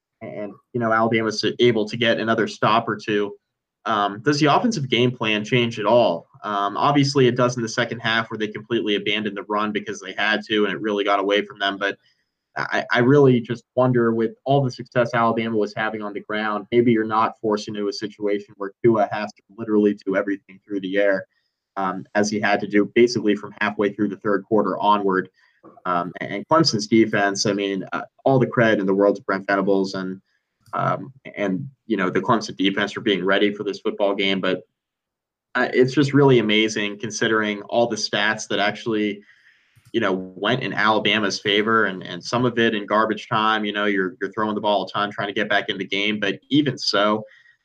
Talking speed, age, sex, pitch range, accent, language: 215 wpm, 20-39, male, 100-115 Hz, American, English